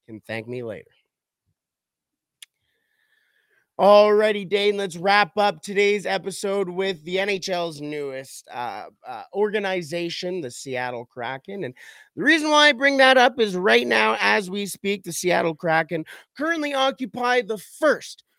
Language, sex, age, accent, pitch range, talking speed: English, male, 30-49, American, 135-205 Hz, 140 wpm